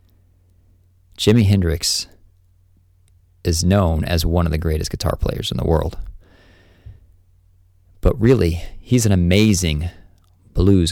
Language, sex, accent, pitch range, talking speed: English, male, American, 85-90 Hz, 110 wpm